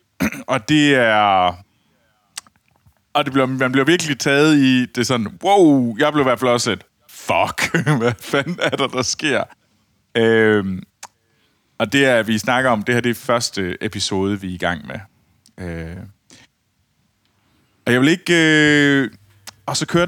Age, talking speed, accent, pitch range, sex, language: 30-49, 165 wpm, native, 105-140 Hz, male, Danish